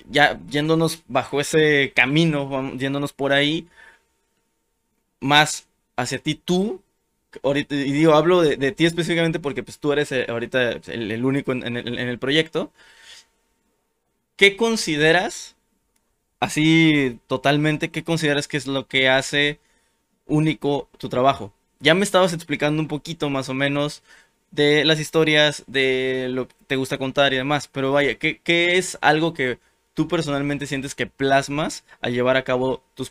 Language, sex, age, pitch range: Spanish, male, 20-39, 130-160 Hz